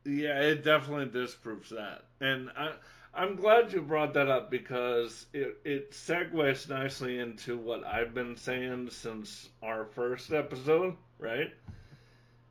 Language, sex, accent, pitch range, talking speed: English, male, American, 120-140 Hz, 130 wpm